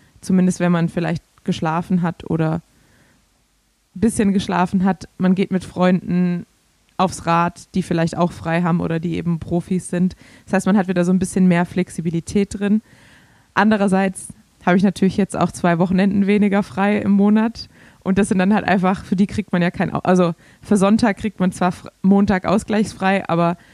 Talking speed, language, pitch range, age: 185 wpm, German, 175-195 Hz, 20-39